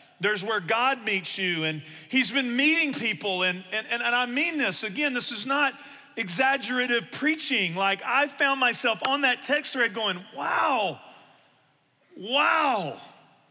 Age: 40-59